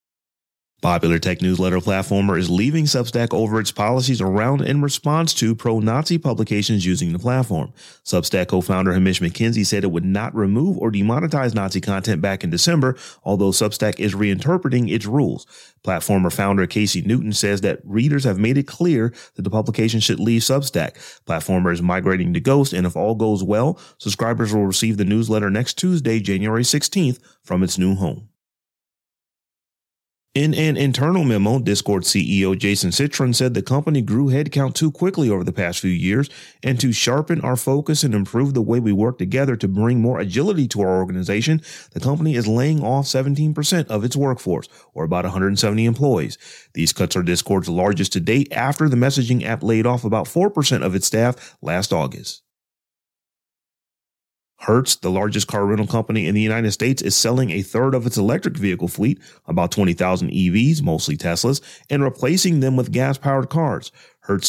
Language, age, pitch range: English, 30-49, 100-135 Hz